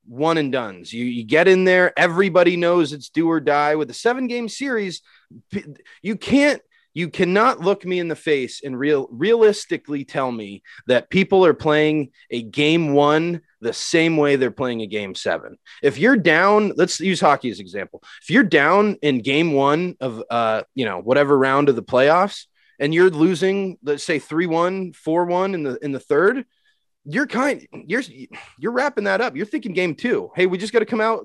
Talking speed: 200 wpm